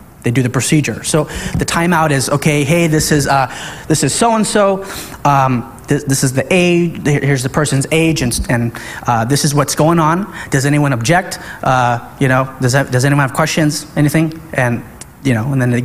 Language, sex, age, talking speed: English, male, 30-49, 200 wpm